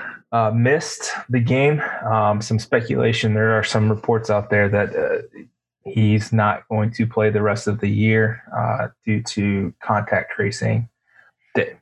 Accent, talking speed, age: American, 155 wpm, 20-39